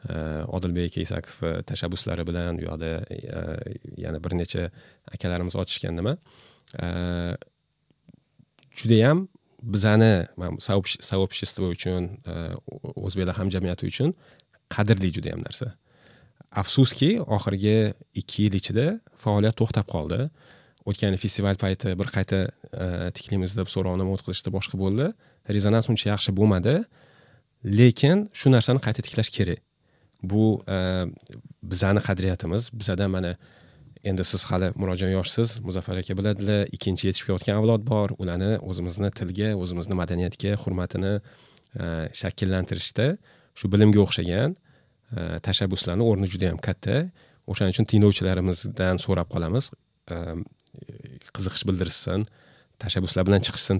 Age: 30-49